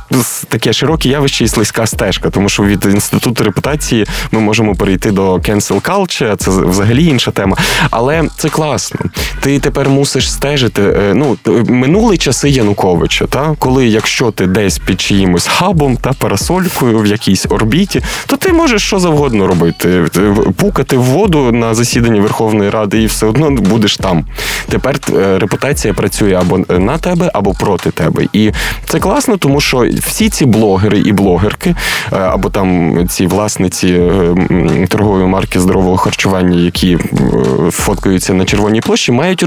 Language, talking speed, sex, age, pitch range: Ukrainian, 145 wpm, male, 20-39, 100-145 Hz